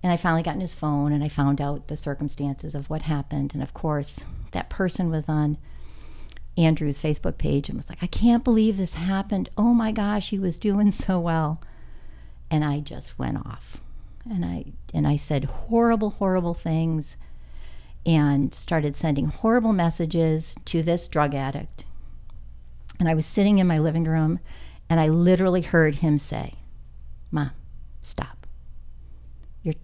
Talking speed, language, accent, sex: 165 wpm, English, American, female